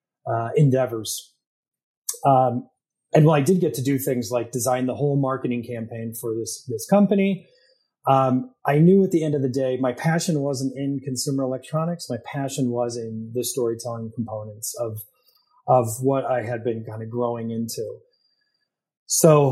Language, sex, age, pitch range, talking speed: English, male, 30-49, 120-155 Hz, 165 wpm